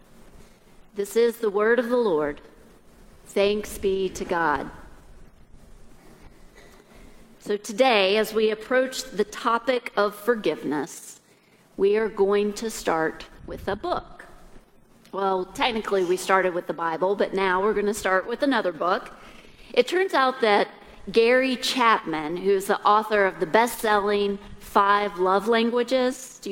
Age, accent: 40-59, American